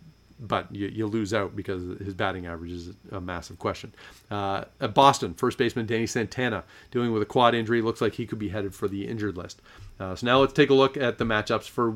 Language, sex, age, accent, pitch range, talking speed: English, male, 40-59, American, 100-120 Hz, 230 wpm